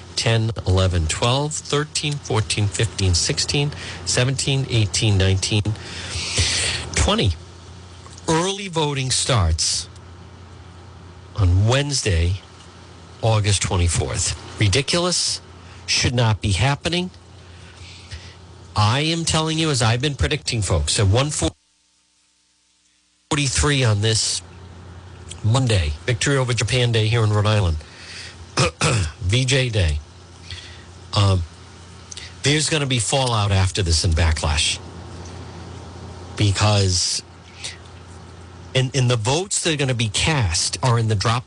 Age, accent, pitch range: 50-69, American, 90-125 Hz